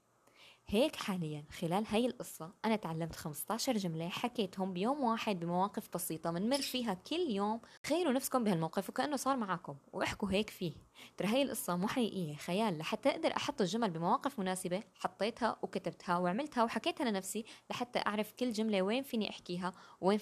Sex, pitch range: female, 180-245 Hz